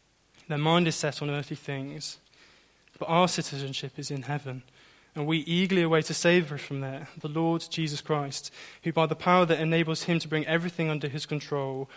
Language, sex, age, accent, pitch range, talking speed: English, male, 20-39, British, 140-155 Hz, 190 wpm